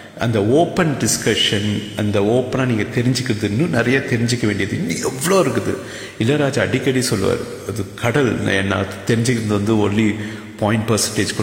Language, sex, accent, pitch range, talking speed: English, male, Indian, 105-130 Hz, 90 wpm